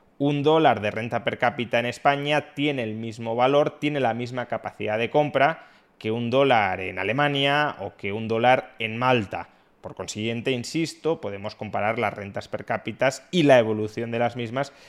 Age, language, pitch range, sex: 20-39, Spanish, 120-165 Hz, male